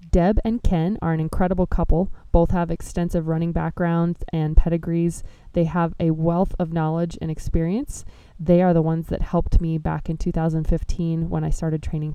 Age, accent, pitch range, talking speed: 20-39, American, 160-180 Hz, 180 wpm